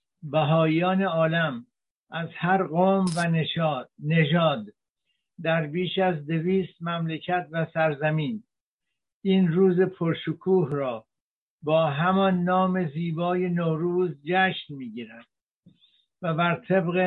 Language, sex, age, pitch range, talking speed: Persian, male, 60-79, 155-180 Hz, 100 wpm